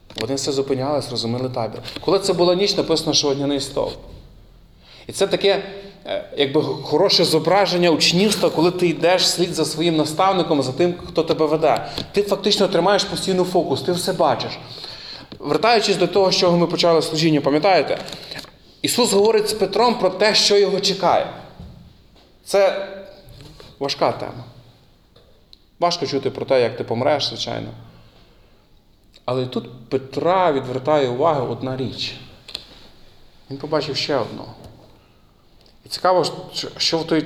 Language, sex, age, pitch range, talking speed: Ukrainian, male, 30-49, 125-180 Hz, 135 wpm